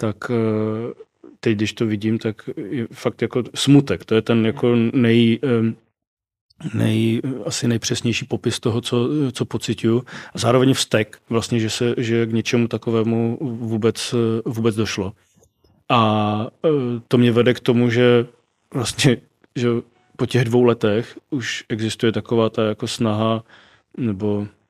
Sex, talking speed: male, 135 wpm